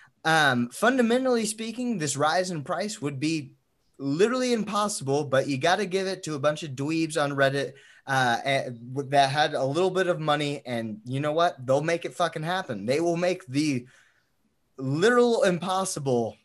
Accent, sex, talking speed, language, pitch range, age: American, male, 170 wpm, English, 135-175 Hz, 20-39